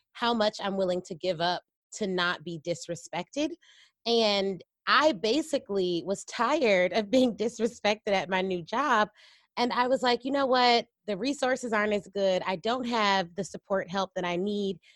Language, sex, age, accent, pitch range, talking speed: English, female, 30-49, American, 180-225 Hz, 175 wpm